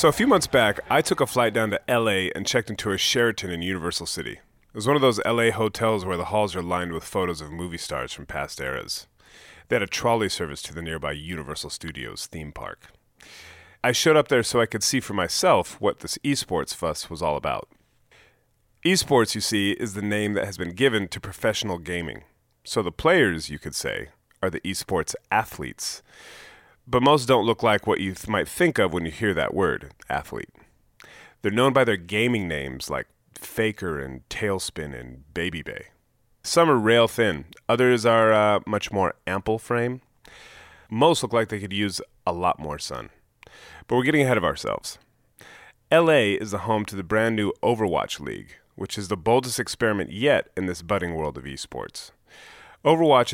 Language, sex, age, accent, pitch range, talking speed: English, male, 30-49, American, 90-115 Hz, 195 wpm